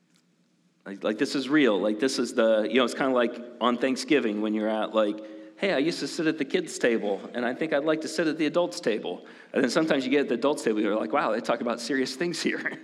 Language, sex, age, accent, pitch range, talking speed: English, male, 40-59, American, 110-145 Hz, 275 wpm